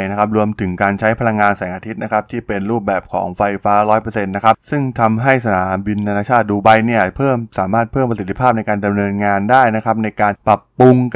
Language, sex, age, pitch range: Thai, male, 20-39, 100-120 Hz